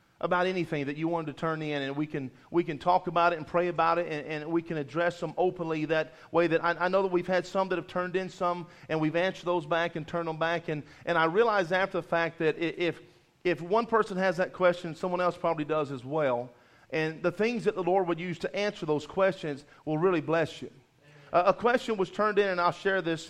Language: English